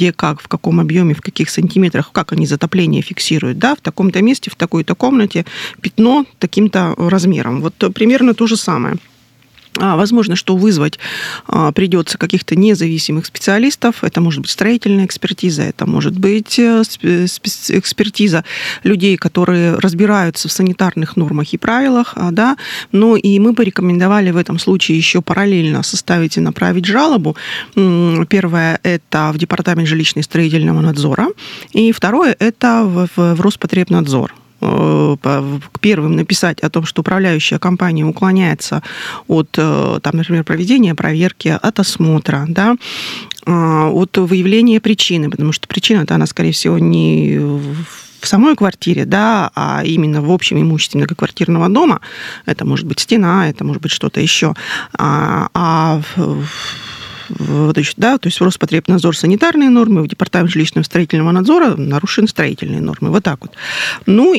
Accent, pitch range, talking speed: native, 160-205 Hz, 135 wpm